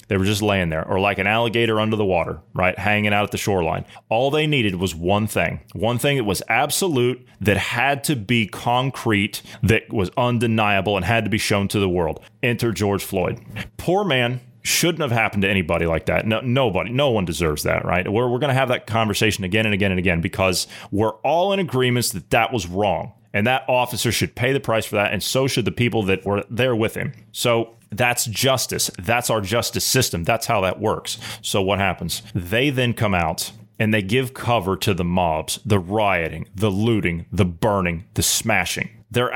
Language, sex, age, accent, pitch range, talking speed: English, male, 30-49, American, 100-130 Hz, 210 wpm